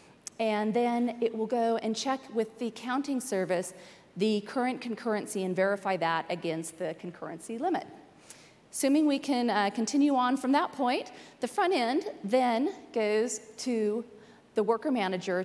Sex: female